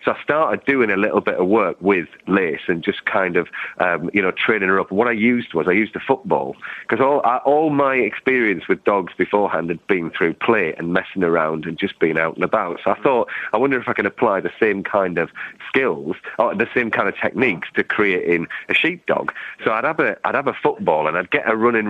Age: 40-59